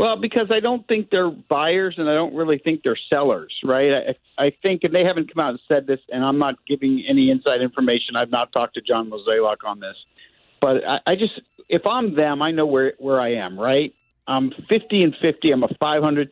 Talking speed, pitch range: 230 wpm, 130-175 Hz